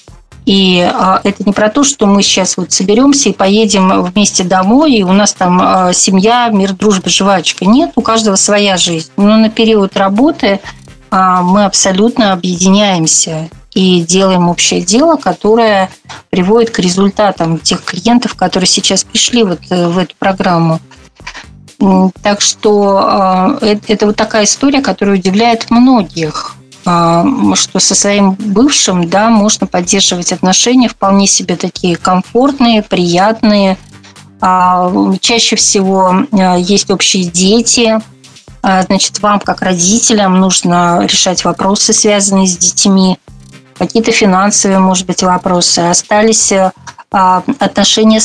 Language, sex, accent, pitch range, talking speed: Russian, female, native, 185-215 Hz, 120 wpm